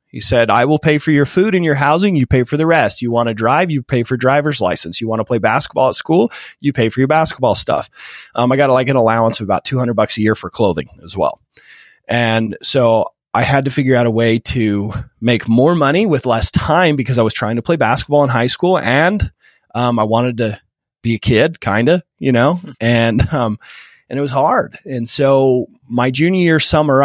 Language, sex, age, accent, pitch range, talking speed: English, male, 30-49, American, 110-140 Hz, 230 wpm